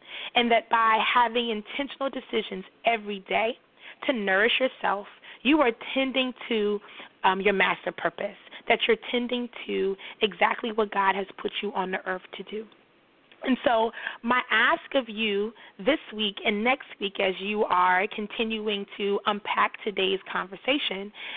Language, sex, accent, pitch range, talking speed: English, female, American, 205-255 Hz, 150 wpm